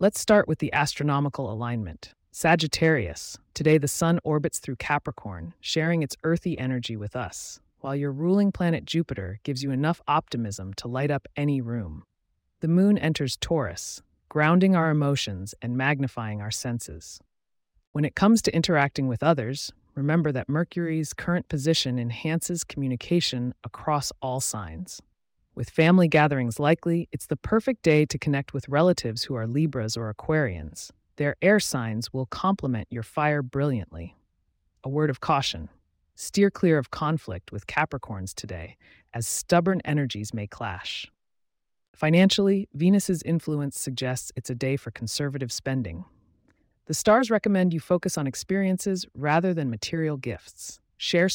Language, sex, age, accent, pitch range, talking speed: English, female, 30-49, American, 115-160 Hz, 145 wpm